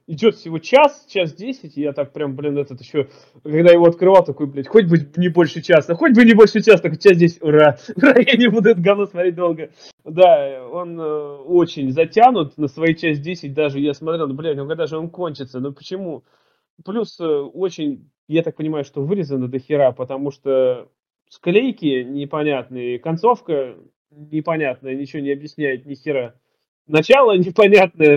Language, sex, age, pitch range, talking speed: Russian, male, 20-39, 140-185 Hz, 175 wpm